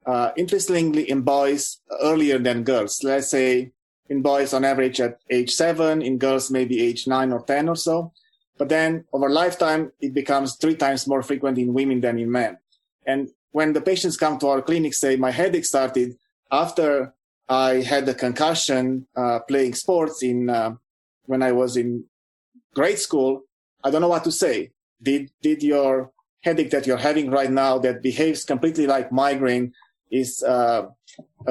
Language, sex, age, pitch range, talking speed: English, male, 30-49, 130-155 Hz, 175 wpm